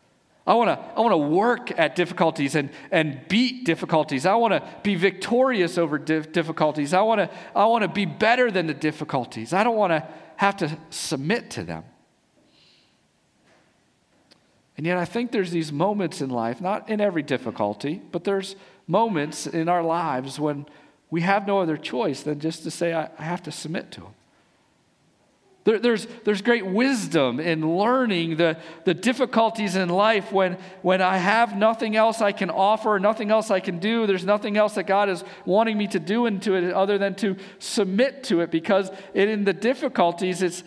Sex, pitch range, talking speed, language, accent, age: male, 165-210 Hz, 175 wpm, English, American, 50-69